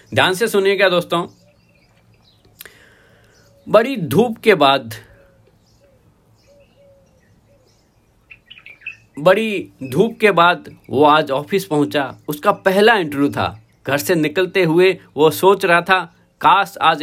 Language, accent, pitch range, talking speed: Hindi, native, 135-210 Hz, 110 wpm